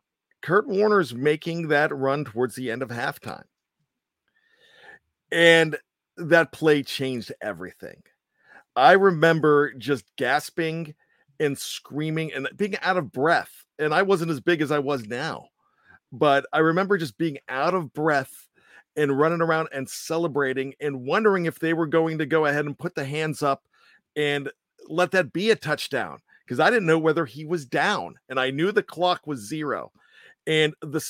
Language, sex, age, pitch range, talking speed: English, male, 50-69, 135-165 Hz, 165 wpm